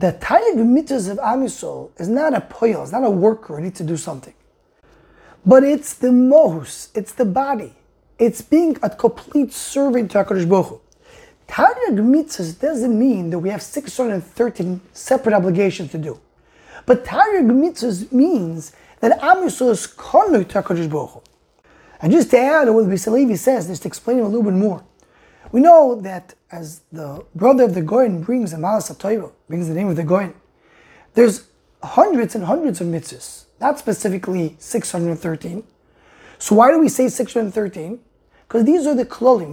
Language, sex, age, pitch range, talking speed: English, male, 20-39, 185-255 Hz, 165 wpm